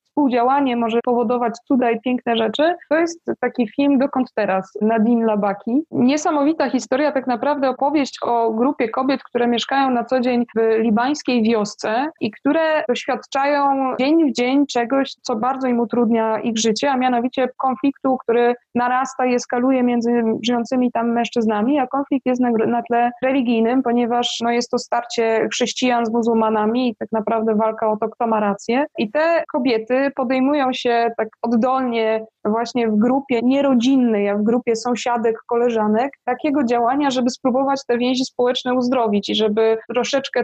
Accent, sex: native, female